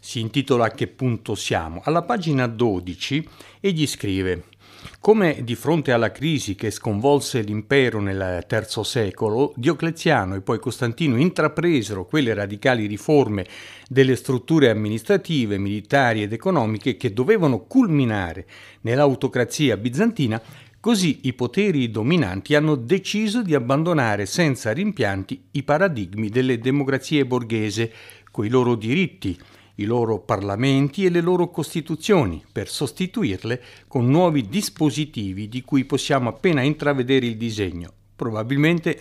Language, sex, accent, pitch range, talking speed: Italian, male, native, 110-145 Hz, 120 wpm